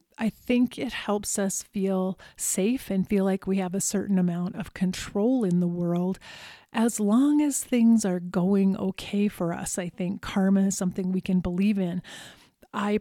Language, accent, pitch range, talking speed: English, American, 185-220 Hz, 180 wpm